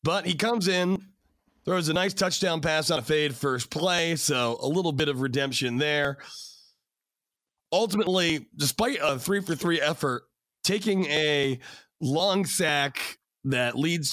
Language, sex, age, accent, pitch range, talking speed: English, male, 30-49, American, 140-185 Hz, 140 wpm